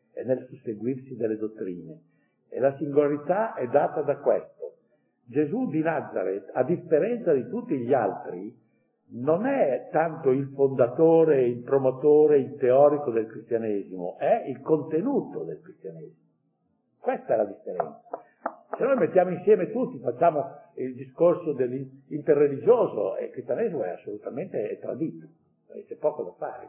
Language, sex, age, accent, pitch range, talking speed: Italian, male, 60-79, native, 130-205 Hz, 135 wpm